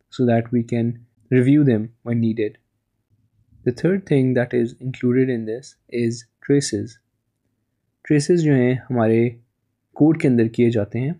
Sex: male